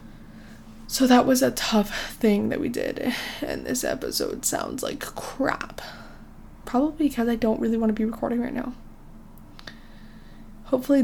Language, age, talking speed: English, 20-39, 145 wpm